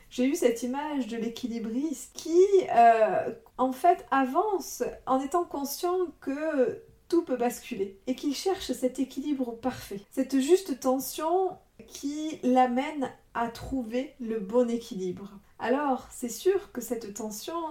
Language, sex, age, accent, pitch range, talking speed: French, female, 40-59, French, 225-275 Hz, 135 wpm